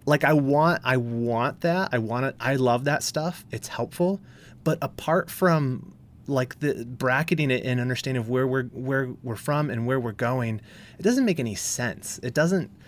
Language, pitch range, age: English, 115-145 Hz, 30-49